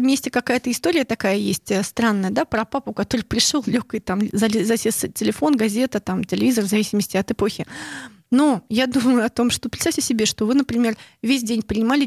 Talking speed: 180 wpm